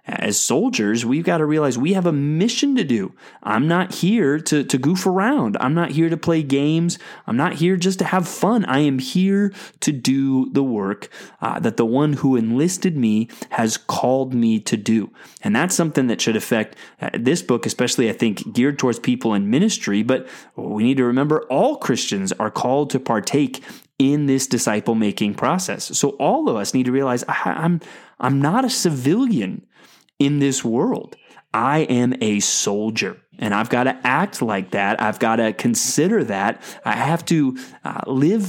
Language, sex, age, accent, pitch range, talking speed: English, male, 20-39, American, 120-170 Hz, 185 wpm